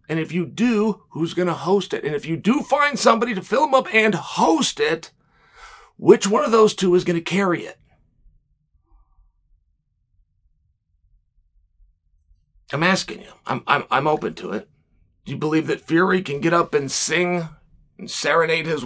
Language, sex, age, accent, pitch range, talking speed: English, male, 40-59, American, 160-245 Hz, 170 wpm